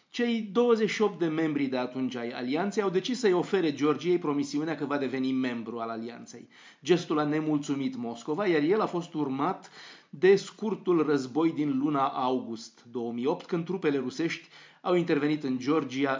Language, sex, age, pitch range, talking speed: Romanian, male, 30-49, 130-170 Hz, 160 wpm